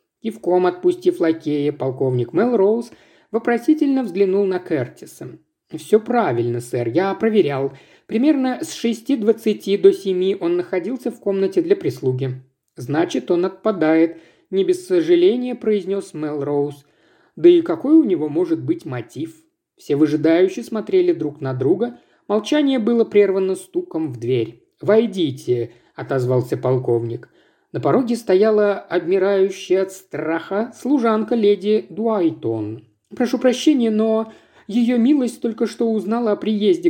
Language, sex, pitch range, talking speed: Russian, male, 160-245 Hz, 130 wpm